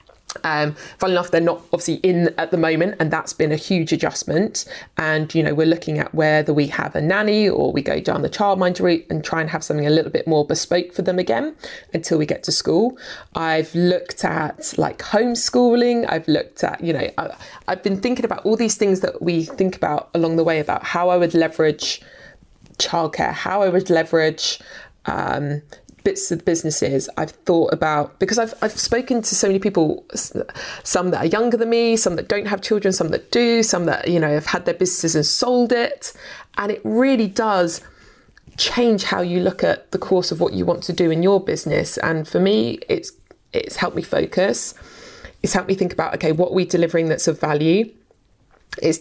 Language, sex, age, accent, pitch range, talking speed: English, female, 20-39, British, 160-205 Hz, 205 wpm